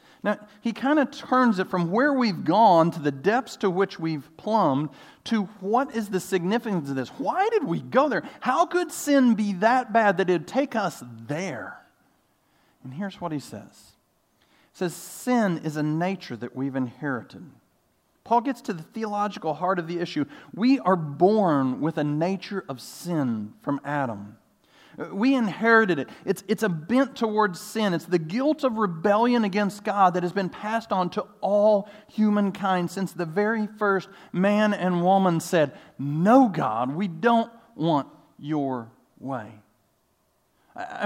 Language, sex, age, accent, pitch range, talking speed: English, male, 40-59, American, 160-220 Hz, 165 wpm